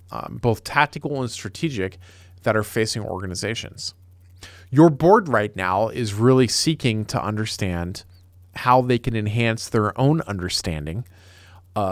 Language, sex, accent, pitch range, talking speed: English, male, American, 95-120 Hz, 130 wpm